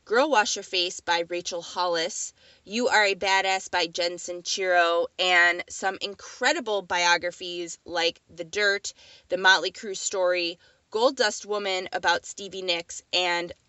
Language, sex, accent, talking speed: English, female, American, 140 wpm